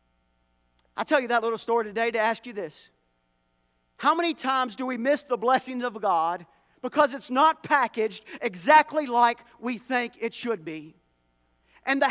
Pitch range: 200-275 Hz